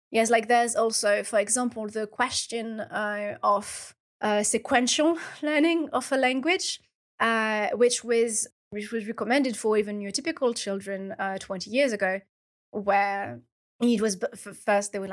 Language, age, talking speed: English, 20-39, 145 wpm